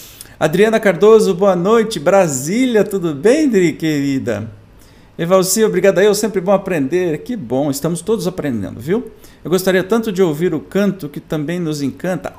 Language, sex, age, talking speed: Portuguese, male, 50-69, 155 wpm